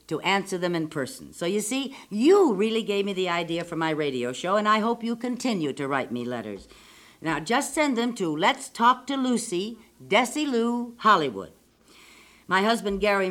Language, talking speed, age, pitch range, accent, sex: English, 190 wpm, 60-79, 165-230 Hz, American, female